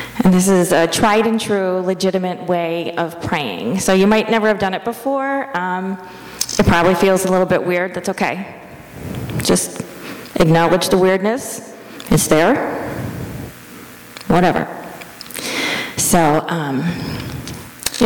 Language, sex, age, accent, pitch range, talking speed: English, female, 30-49, American, 170-215 Hz, 130 wpm